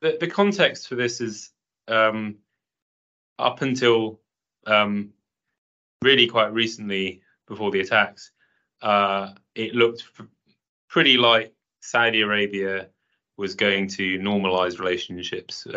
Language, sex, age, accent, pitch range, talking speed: English, male, 30-49, British, 90-110 Hz, 105 wpm